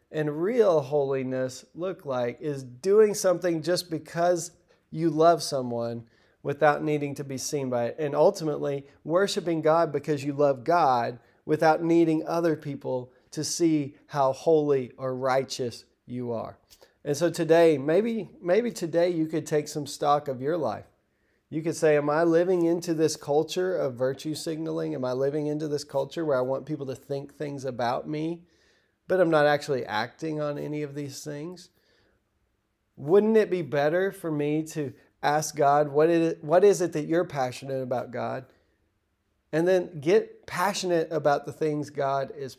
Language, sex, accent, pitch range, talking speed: English, male, American, 135-170 Hz, 170 wpm